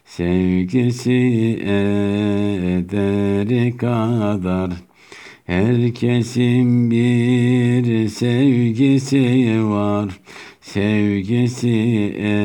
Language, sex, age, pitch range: Turkish, male, 60-79, 105-125 Hz